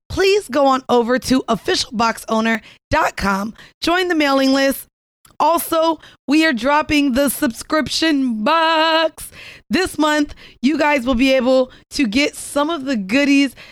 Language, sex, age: English, female, 20-39